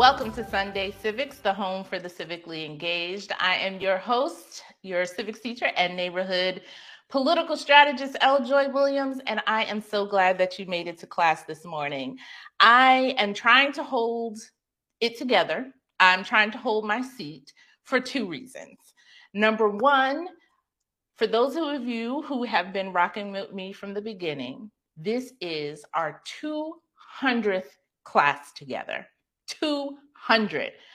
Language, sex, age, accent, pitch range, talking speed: English, female, 30-49, American, 175-260 Hz, 145 wpm